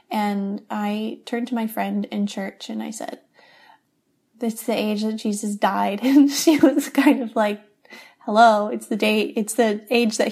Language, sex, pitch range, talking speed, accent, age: English, female, 200-235 Hz, 185 wpm, American, 10-29